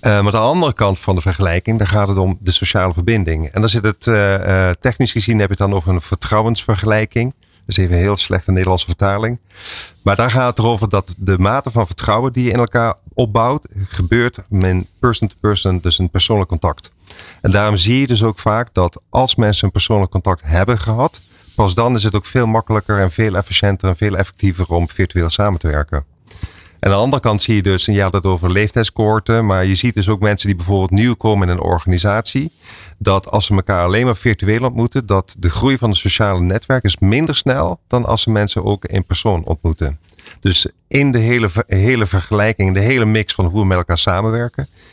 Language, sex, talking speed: Dutch, male, 215 wpm